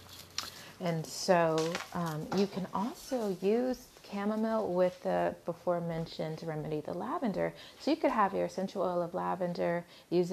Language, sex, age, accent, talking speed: English, female, 30-49, American, 150 wpm